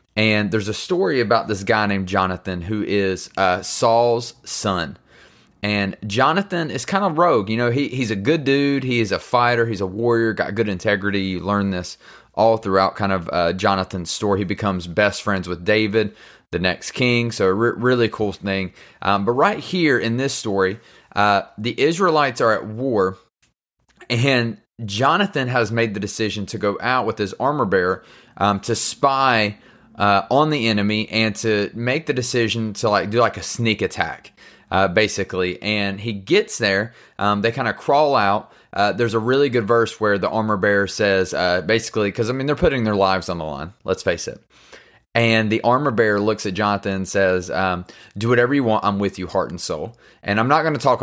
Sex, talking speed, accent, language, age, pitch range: male, 200 wpm, American, English, 30-49, 100-120 Hz